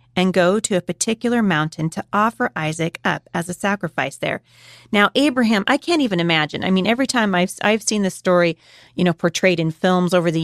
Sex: female